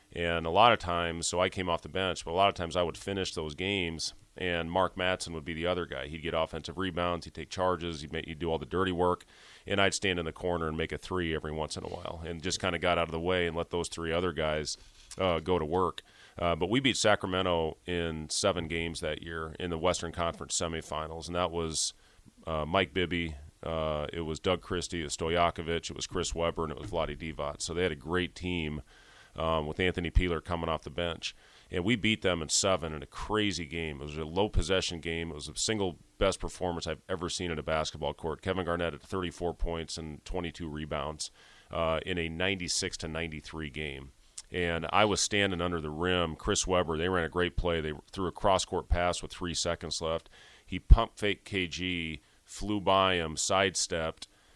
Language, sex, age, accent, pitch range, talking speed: English, male, 30-49, American, 80-90 Hz, 225 wpm